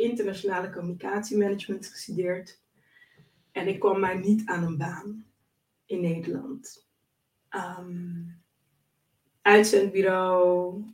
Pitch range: 185-210 Hz